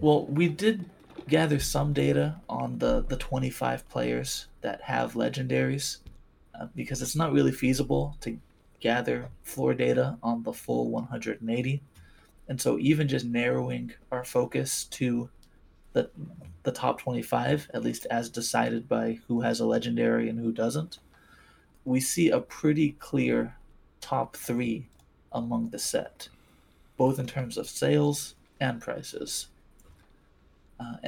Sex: male